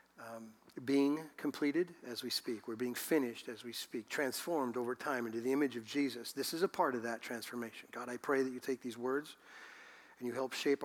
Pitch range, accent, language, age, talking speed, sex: 125-160 Hz, American, English, 50-69, 215 wpm, male